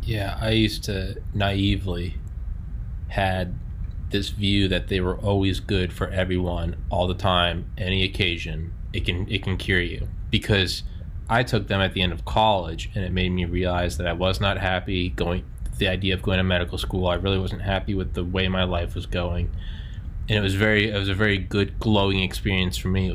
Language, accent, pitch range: English, American, 90-105 Hz